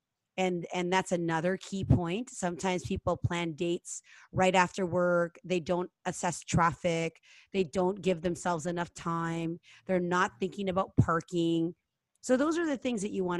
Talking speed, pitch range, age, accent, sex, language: 160 wpm, 180-230 Hz, 30-49, American, female, English